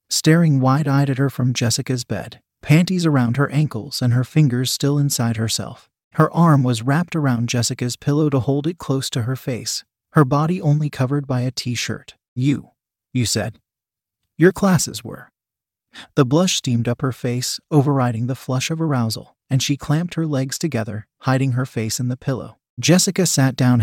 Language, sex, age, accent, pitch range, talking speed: English, male, 30-49, American, 120-145 Hz, 175 wpm